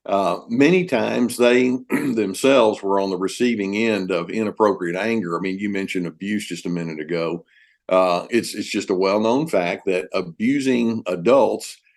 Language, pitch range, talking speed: English, 100-125 Hz, 160 wpm